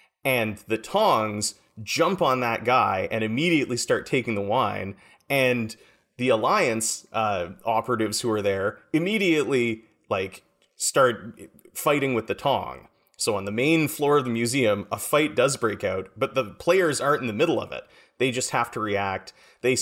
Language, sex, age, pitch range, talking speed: English, male, 30-49, 105-130 Hz, 170 wpm